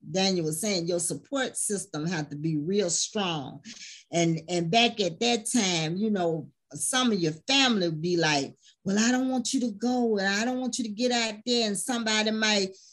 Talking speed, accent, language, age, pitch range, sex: 210 wpm, American, English, 40-59, 180-255 Hz, female